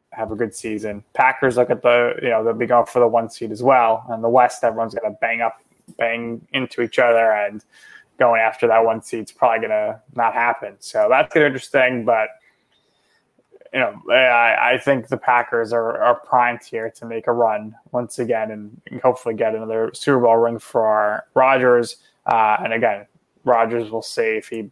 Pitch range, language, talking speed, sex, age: 115-130 Hz, English, 200 wpm, male, 20-39